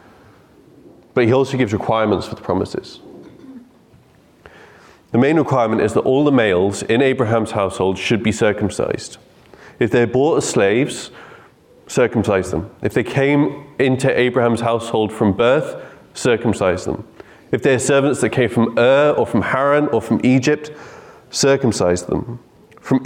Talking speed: 145 wpm